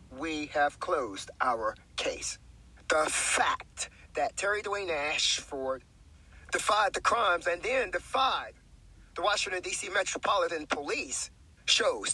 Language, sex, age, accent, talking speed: English, male, 40-59, American, 115 wpm